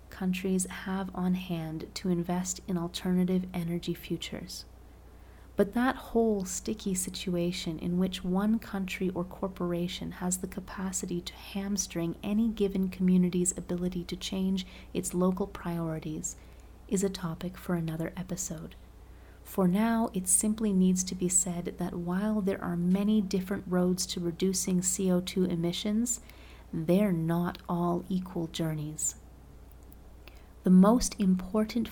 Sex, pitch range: female, 175-195 Hz